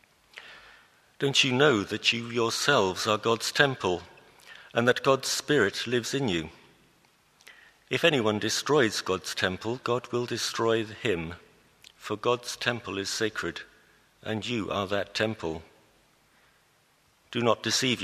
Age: 50-69